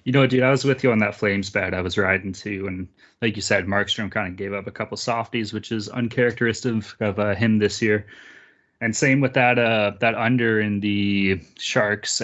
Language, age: English, 20-39